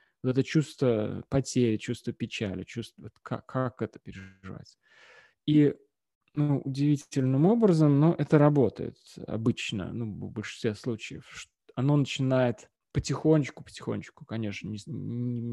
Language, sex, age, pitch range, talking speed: Russian, male, 20-39, 120-155 Hz, 110 wpm